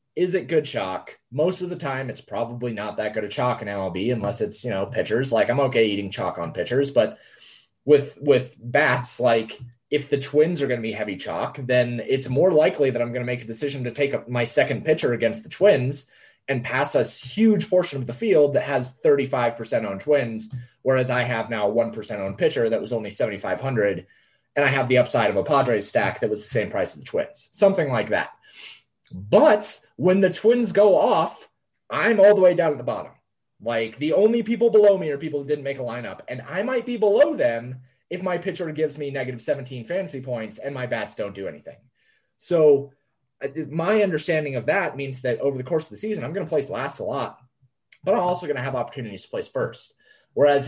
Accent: American